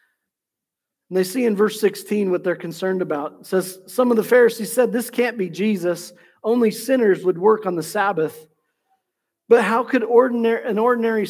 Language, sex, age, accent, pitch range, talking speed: English, male, 40-59, American, 195-275 Hz, 175 wpm